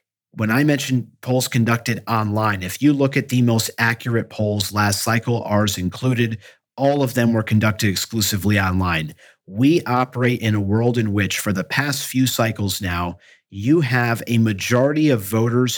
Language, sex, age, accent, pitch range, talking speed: English, male, 40-59, American, 105-125 Hz, 165 wpm